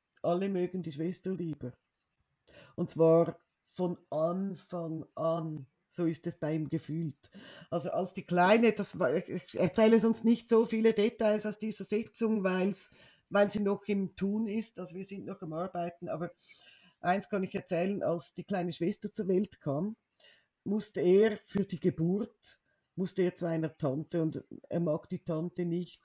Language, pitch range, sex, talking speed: German, 160-195 Hz, female, 170 wpm